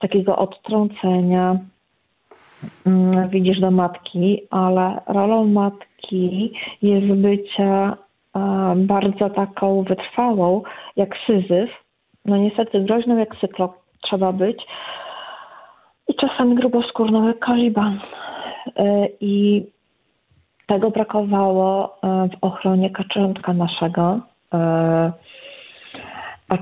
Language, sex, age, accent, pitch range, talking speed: Polish, female, 40-59, native, 185-220 Hz, 75 wpm